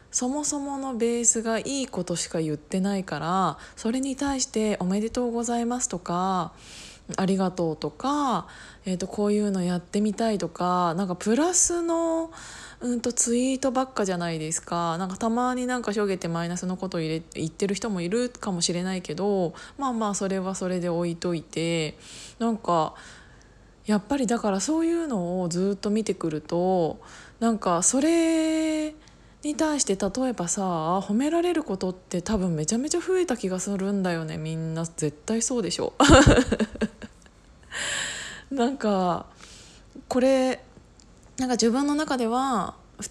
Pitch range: 180-250 Hz